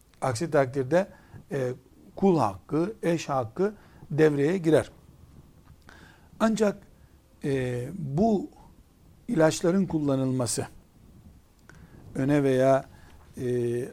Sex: male